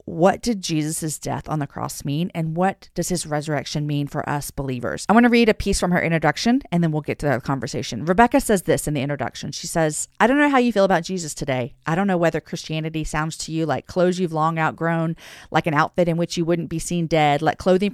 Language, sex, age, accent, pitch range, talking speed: English, female, 40-59, American, 145-185 Hz, 250 wpm